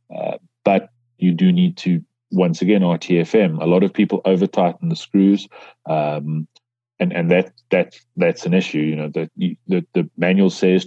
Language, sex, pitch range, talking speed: English, male, 85-115 Hz, 170 wpm